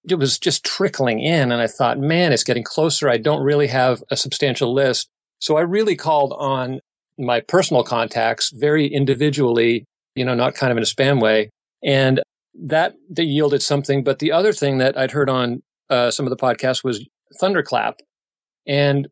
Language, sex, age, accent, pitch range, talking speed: English, male, 40-59, American, 120-145 Hz, 185 wpm